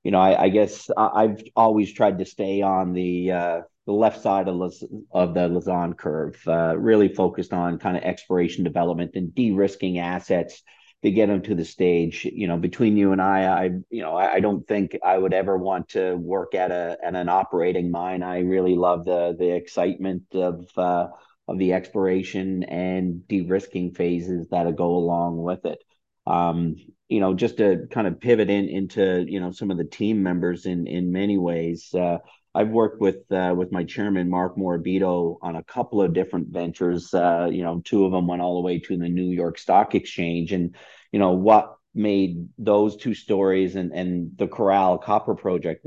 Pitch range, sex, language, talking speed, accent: 85-95 Hz, male, English, 195 wpm, American